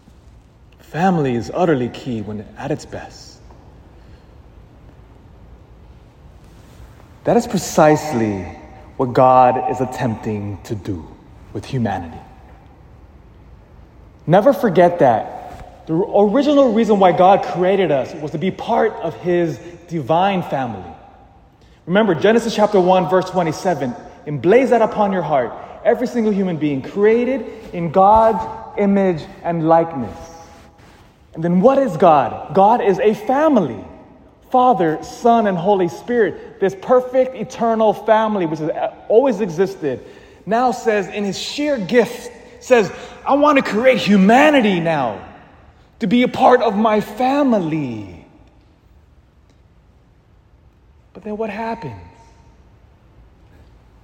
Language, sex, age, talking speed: English, male, 30-49, 115 wpm